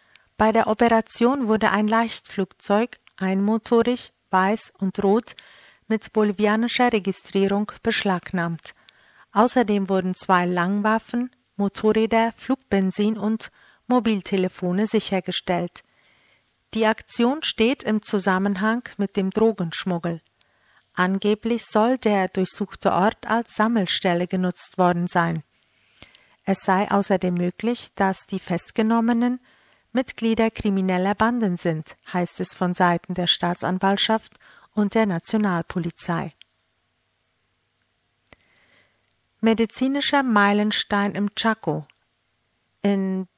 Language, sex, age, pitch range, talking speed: German, female, 50-69, 180-220 Hz, 90 wpm